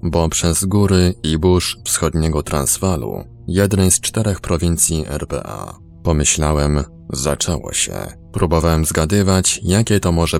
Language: Polish